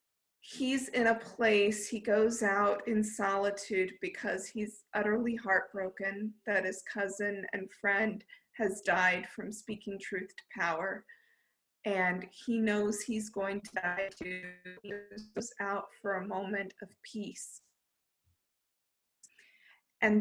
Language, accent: English, American